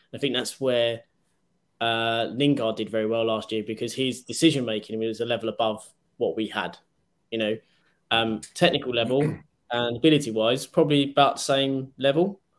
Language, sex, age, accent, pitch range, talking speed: English, male, 20-39, British, 115-150 Hz, 155 wpm